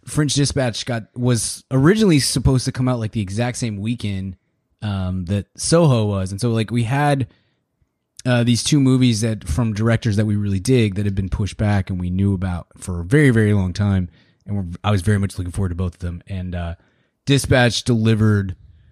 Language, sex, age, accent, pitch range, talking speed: English, male, 20-39, American, 95-120 Hz, 205 wpm